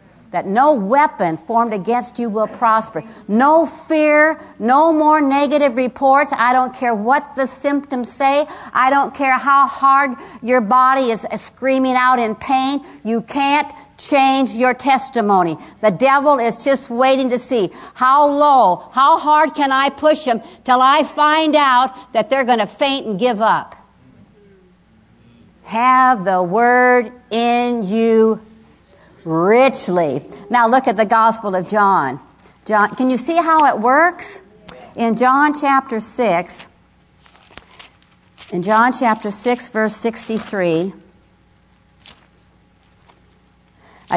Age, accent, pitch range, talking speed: 60-79, American, 215-275 Hz, 130 wpm